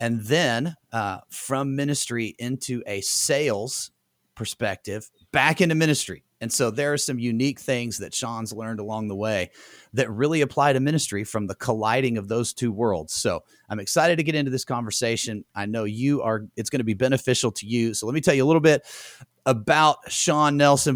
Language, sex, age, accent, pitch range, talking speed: English, male, 30-49, American, 110-145 Hz, 190 wpm